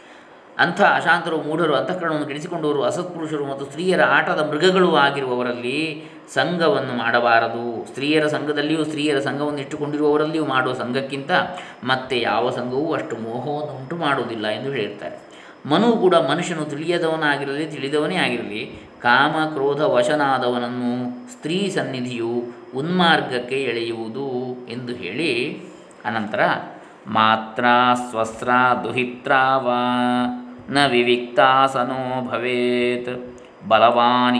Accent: native